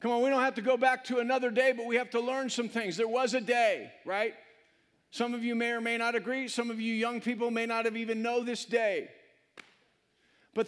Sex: male